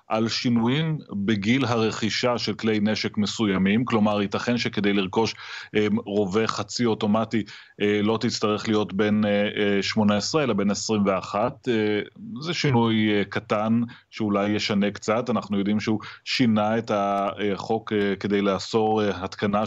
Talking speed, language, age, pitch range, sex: 115 wpm, Hebrew, 30-49, 100-115 Hz, male